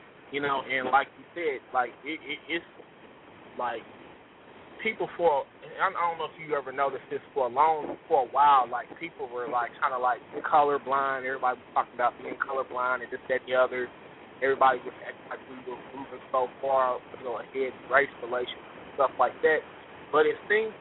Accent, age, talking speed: American, 20-39, 200 wpm